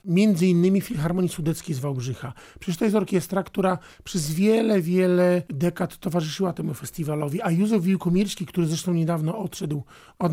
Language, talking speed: Polish, 150 wpm